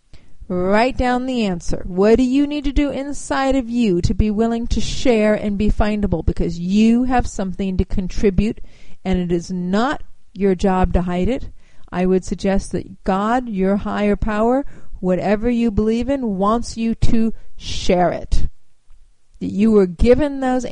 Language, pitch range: English, 190-240 Hz